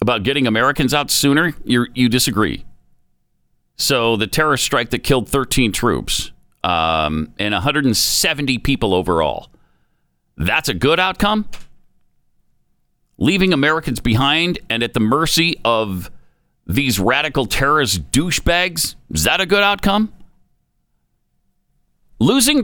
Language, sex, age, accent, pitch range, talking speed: English, male, 50-69, American, 115-185 Hz, 110 wpm